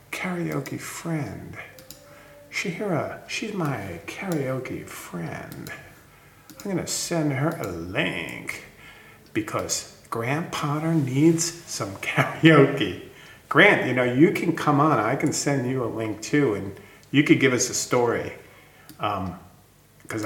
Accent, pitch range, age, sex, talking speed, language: American, 115-160 Hz, 50-69, male, 125 wpm, English